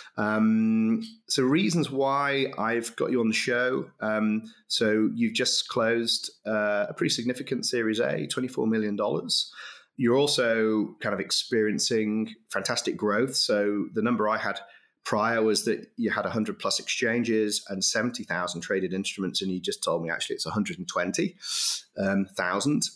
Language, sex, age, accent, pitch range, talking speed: English, male, 30-49, British, 100-125 Hz, 145 wpm